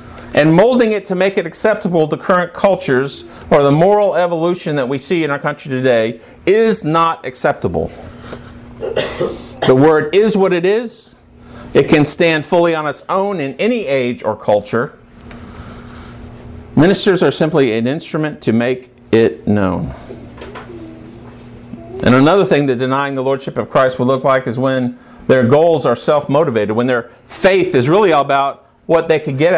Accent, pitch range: American, 120-170 Hz